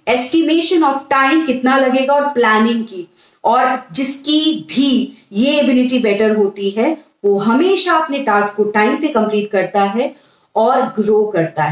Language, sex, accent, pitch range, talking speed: English, female, Indian, 215-280 Hz, 150 wpm